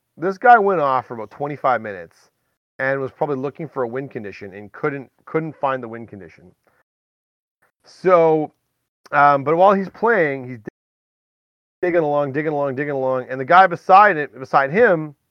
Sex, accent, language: male, American, English